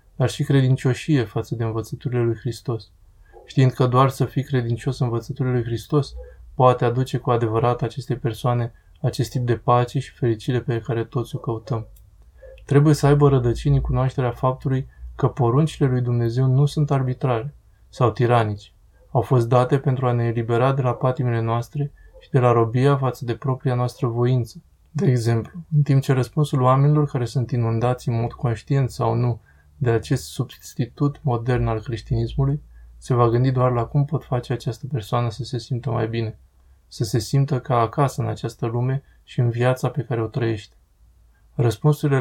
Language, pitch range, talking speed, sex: Romanian, 115-135 Hz, 170 wpm, male